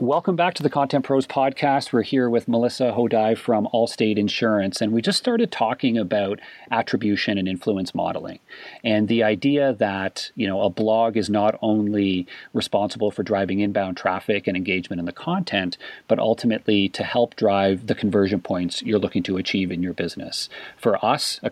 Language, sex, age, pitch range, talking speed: English, male, 40-59, 95-115 Hz, 180 wpm